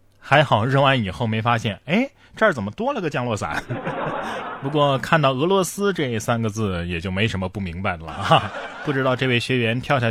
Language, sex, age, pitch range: Chinese, male, 20-39, 105-145 Hz